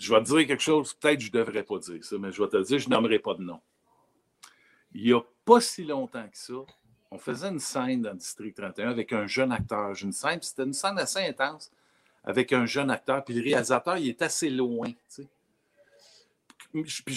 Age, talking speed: 60-79, 225 wpm